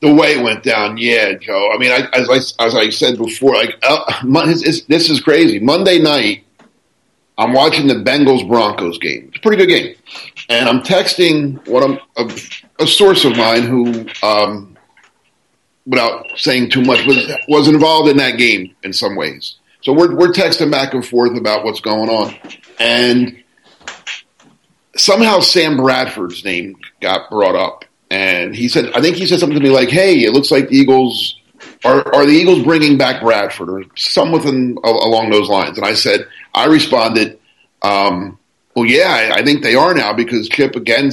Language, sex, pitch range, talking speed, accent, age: English, male, 115-150 Hz, 180 wpm, American, 40-59